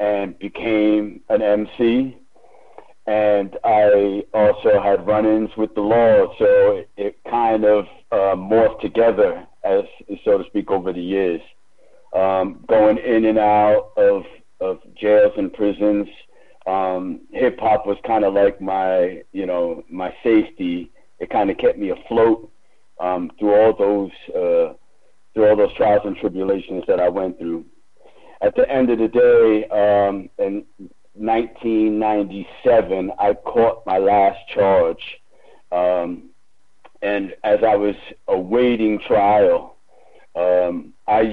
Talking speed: 135 wpm